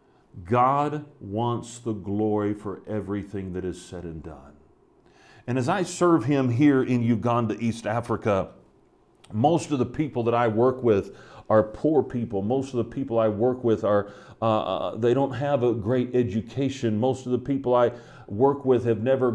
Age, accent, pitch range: 40-59, American, 115-140 Hz